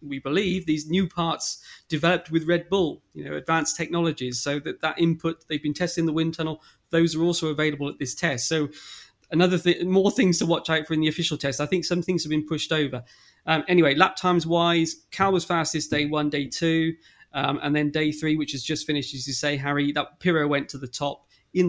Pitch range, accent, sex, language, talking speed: 145-170 Hz, British, male, English, 230 wpm